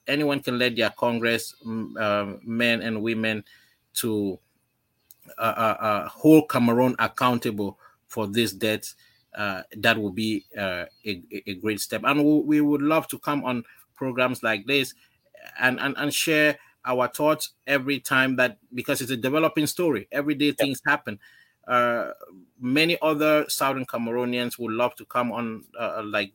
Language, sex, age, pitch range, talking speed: English, male, 30-49, 110-130 Hz, 155 wpm